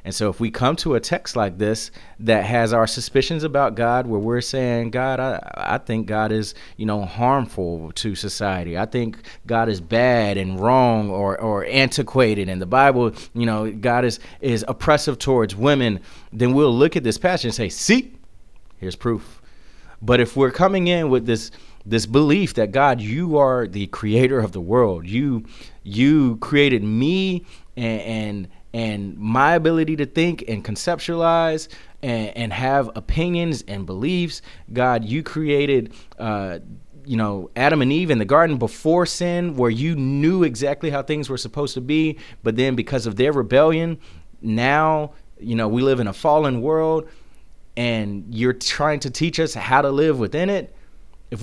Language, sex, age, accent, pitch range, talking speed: English, male, 30-49, American, 110-150 Hz, 175 wpm